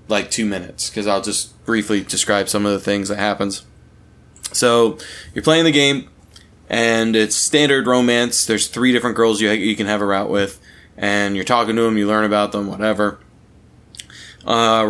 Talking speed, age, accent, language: 180 wpm, 20-39, American, English